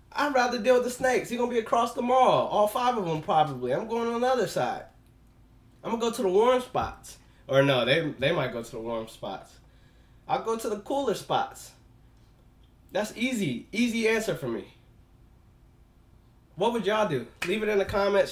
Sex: male